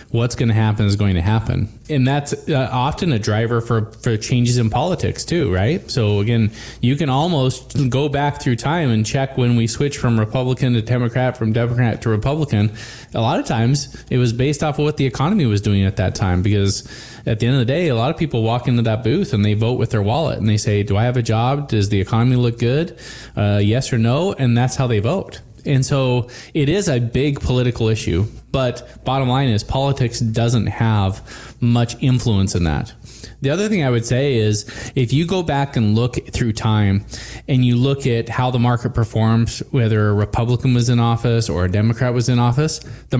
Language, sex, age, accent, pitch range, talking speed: English, male, 20-39, American, 115-135 Hz, 220 wpm